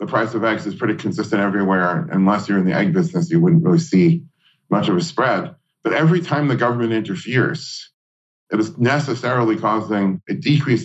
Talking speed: 190 wpm